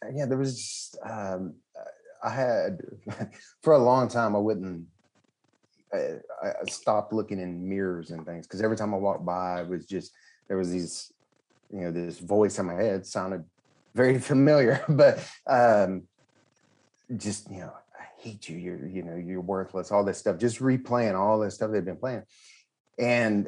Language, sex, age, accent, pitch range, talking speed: English, male, 30-49, American, 90-110 Hz, 170 wpm